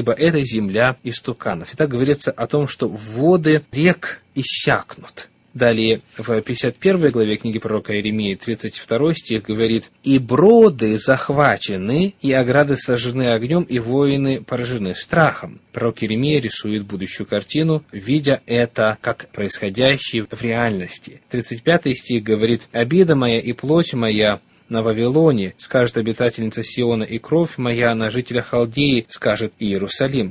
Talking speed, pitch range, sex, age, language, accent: 130 wpm, 115-145 Hz, male, 20-39, Russian, native